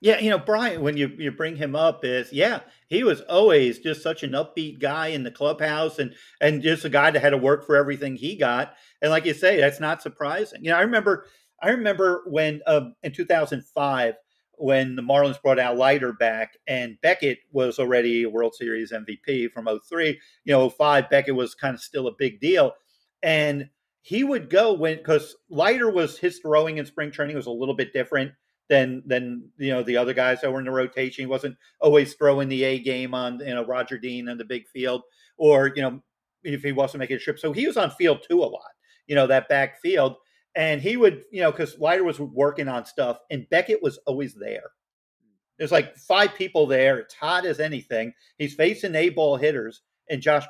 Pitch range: 130-155 Hz